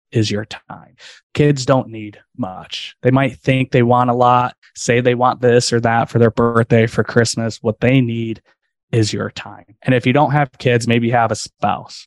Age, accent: 20-39, American